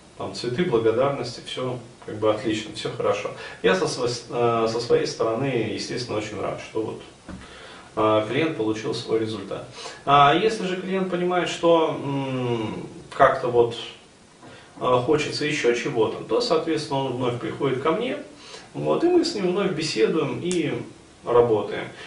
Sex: male